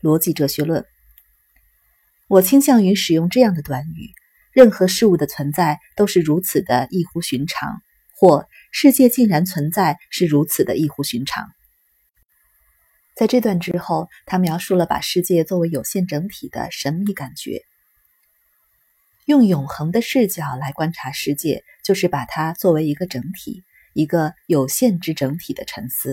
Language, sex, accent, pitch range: Chinese, female, native, 155-215 Hz